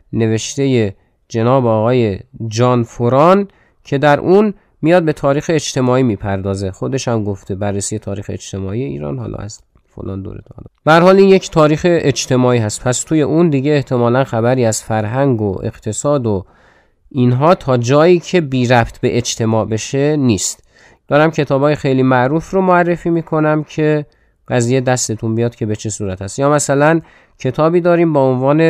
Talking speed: 155 wpm